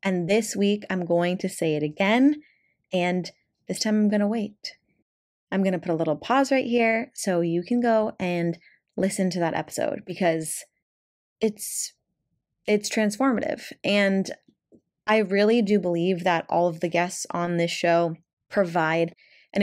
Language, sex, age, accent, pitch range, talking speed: English, female, 20-39, American, 170-220 Hz, 160 wpm